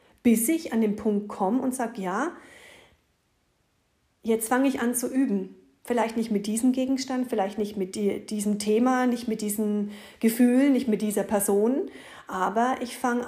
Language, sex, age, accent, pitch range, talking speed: German, female, 40-59, German, 200-245 Hz, 165 wpm